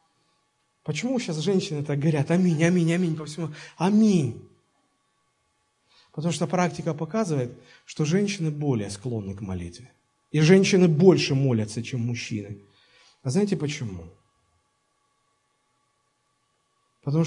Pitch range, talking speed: 130-175 Hz, 110 wpm